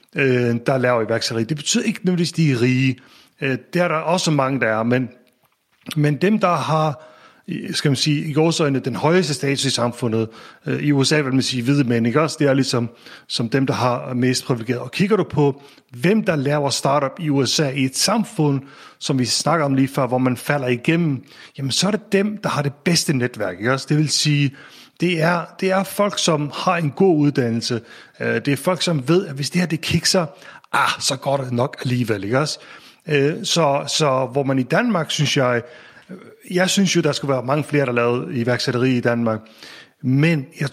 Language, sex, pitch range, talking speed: Danish, male, 130-160 Hz, 210 wpm